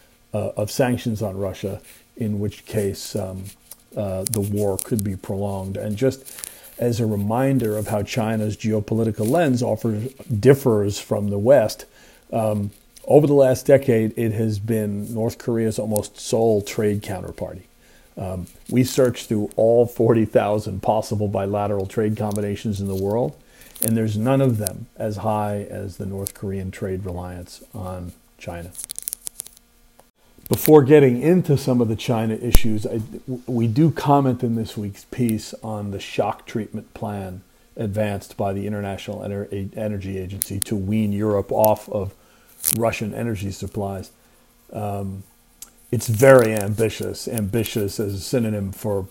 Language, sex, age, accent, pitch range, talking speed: English, male, 40-59, American, 100-115 Hz, 140 wpm